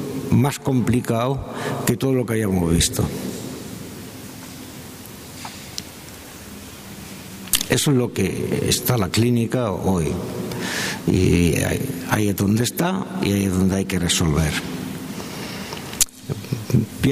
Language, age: Spanish, 60-79